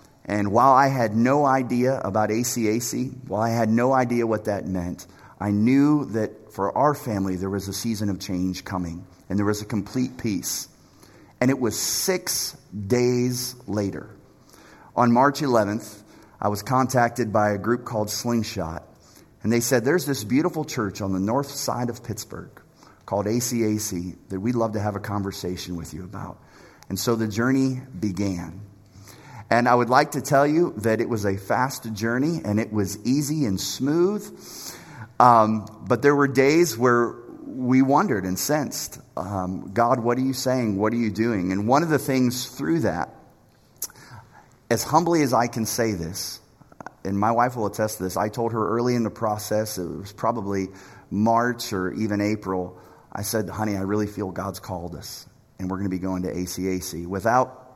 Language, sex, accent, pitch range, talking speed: English, male, American, 100-125 Hz, 180 wpm